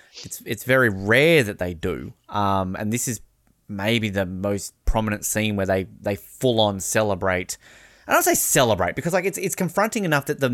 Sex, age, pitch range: male, 20-39, 105-140 Hz